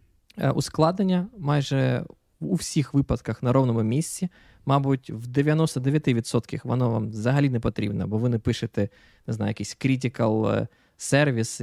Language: Ukrainian